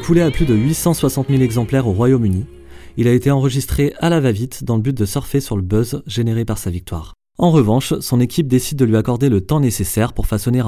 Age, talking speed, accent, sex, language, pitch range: 30-49, 230 wpm, French, male, French, 105-140 Hz